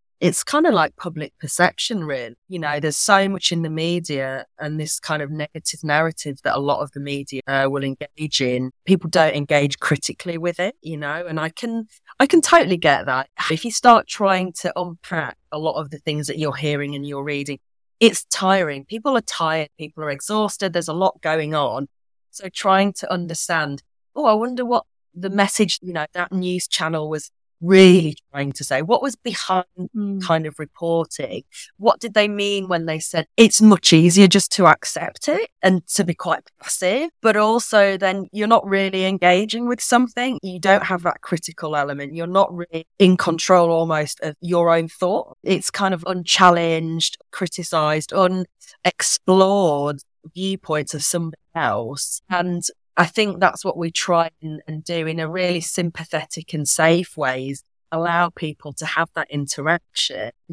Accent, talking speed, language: British, 175 wpm, English